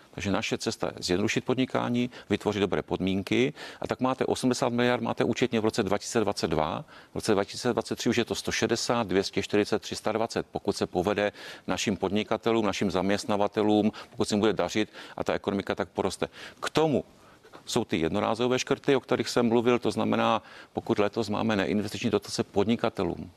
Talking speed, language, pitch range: 160 wpm, Czech, 100-120 Hz